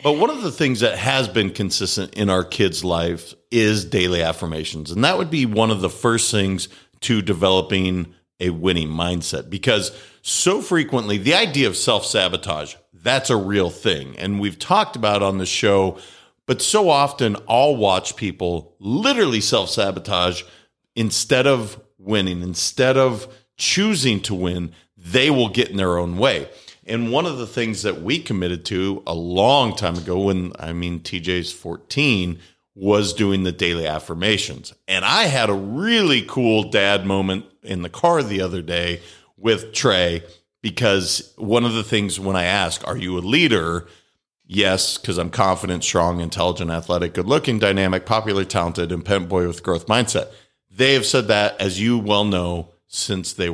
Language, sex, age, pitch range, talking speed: English, male, 50-69, 90-115 Hz, 170 wpm